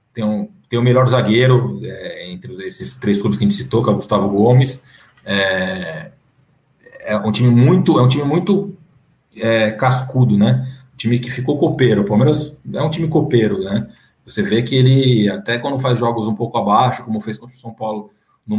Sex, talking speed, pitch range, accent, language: male, 200 wpm, 115-135 Hz, Brazilian, Portuguese